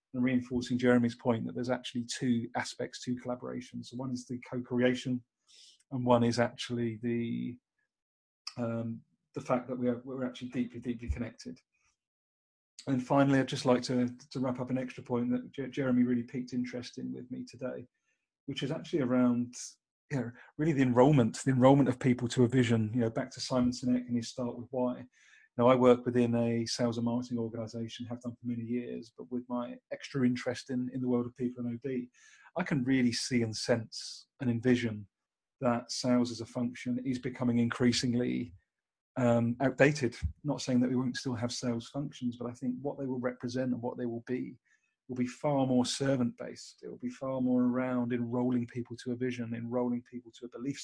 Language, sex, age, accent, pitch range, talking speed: English, male, 30-49, British, 120-130 Hz, 200 wpm